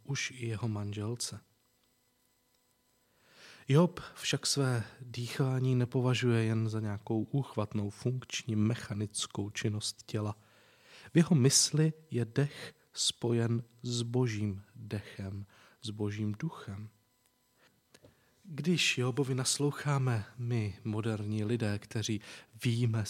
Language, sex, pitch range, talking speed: Czech, male, 110-125 Hz, 95 wpm